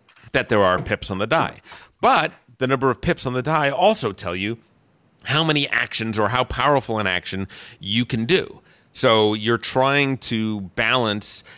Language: English